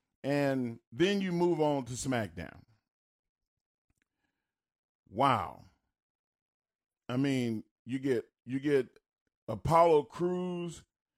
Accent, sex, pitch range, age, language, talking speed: American, male, 110-150 Hz, 40-59, English, 85 wpm